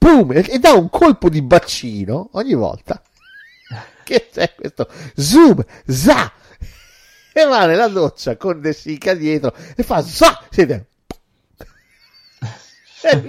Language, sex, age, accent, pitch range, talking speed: Italian, male, 50-69, native, 105-160 Hz, 110 wpm